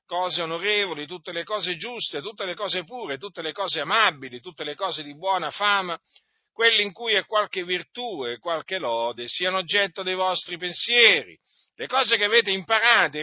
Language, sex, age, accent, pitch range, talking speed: Italian, male, 50-69, native, 150-210 Hz, 175 wpm